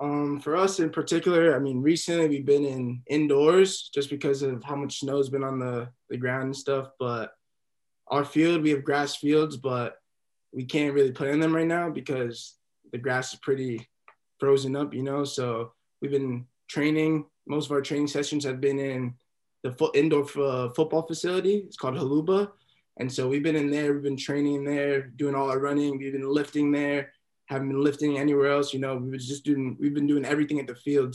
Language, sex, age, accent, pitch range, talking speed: English, male, 20-39, American, 130-150 Hz, 200 wpm